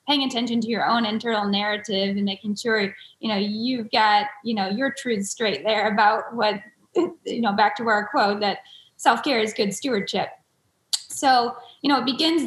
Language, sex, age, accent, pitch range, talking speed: English, female, 20-39, American, 220-260 Hz, 185 wpm